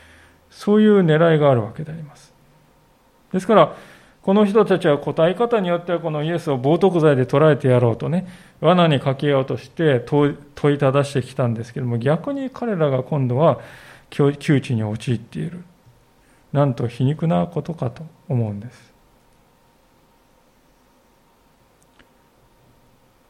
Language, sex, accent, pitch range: Japanese, male, native, 130-165 Hz